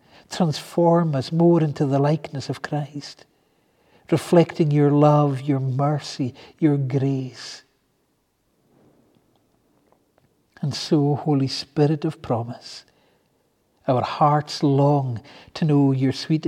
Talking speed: 100 wpm